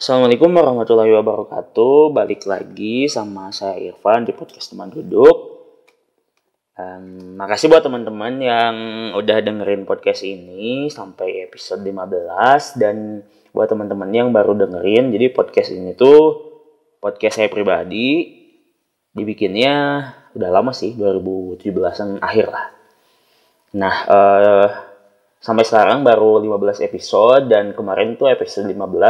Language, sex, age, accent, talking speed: Indonesian, male, 20-39, native, 115 wpm